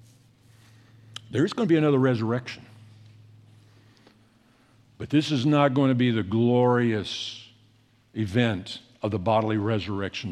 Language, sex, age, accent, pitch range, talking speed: English, male, 60-79, American, 105-125 Hz, 120 wpm